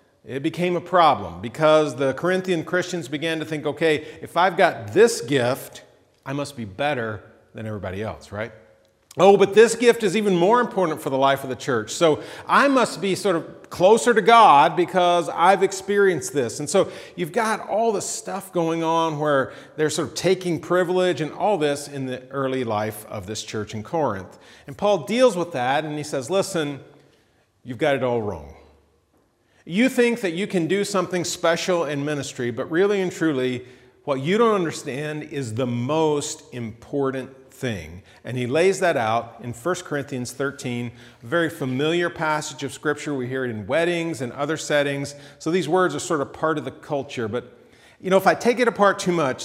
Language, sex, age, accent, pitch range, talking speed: English, male, 40-59, American, 125-175 Hz, 195 wpm